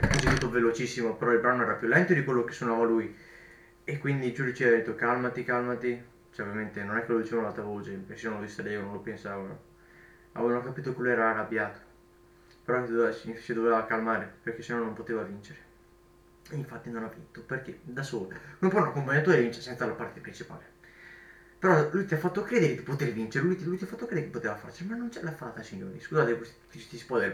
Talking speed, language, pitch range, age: 220 wpm, Italian, 115-140 Hz, 20-39